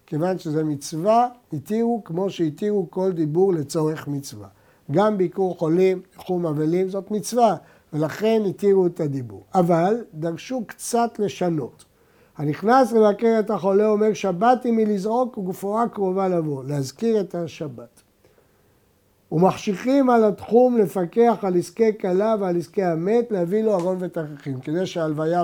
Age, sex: 60-79, male